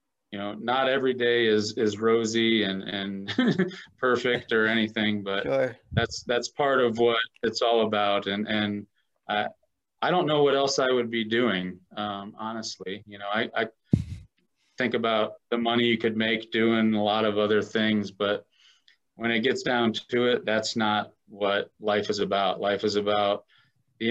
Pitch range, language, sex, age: 100-115 Hz, English, male, 30-49